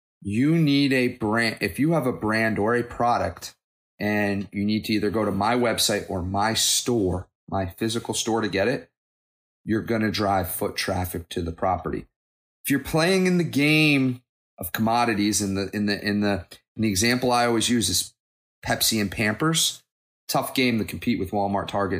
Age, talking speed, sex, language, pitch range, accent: 30-49, 195 wpm, male, English, 105-125 Hz, American